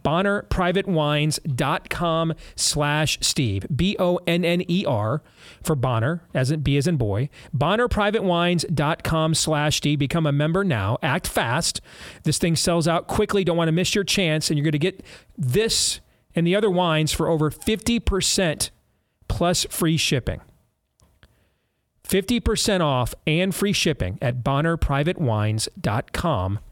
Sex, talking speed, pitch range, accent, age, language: male, 125 wpm, 135-180 Hz, American, 40-59, English